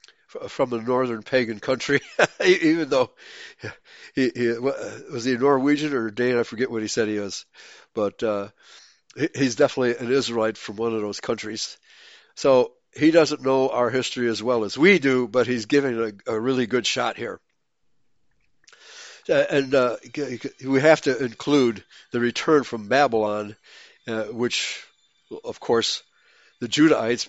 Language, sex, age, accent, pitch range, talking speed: English, male, 60-79, American, 115-140 Hz, 155 wpm